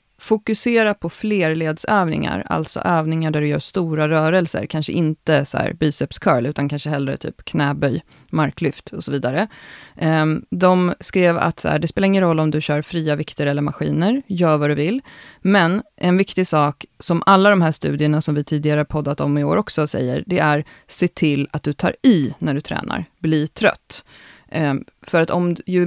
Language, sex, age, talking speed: Swedish, female, 30-49, 185 wpm